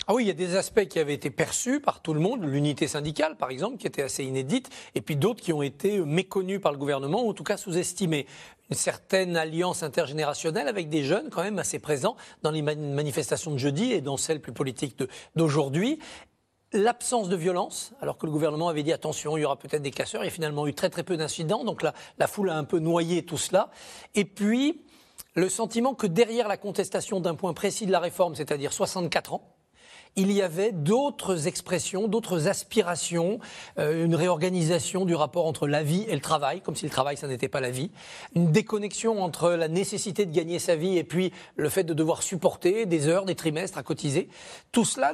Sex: male